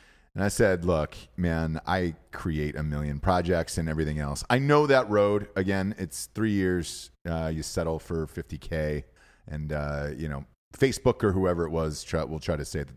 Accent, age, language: American, 30-49, English